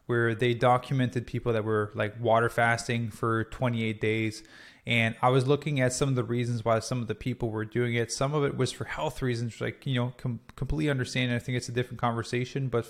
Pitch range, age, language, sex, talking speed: 115-135 Hz, 20-39, English, male, 225 wpm